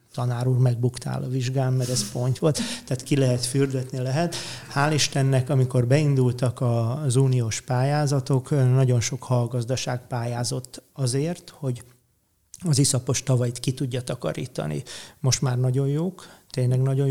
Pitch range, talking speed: 125-140 Hz, 135 wpm